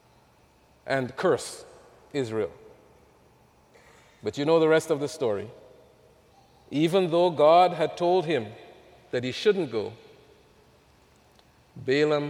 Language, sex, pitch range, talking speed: English, male, 140-220 Hz, 105 wpm